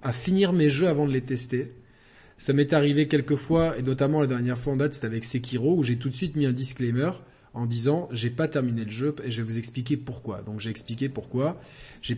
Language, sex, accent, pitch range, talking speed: French, male, French, 120-150 Hz, 240 wpm